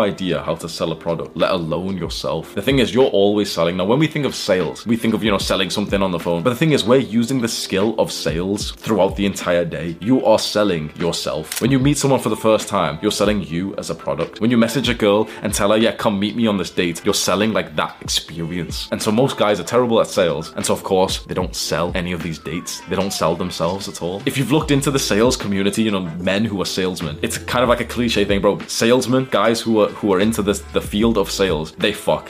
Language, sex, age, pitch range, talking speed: English, male, 20-39, 90-125 Hz, 265 wpm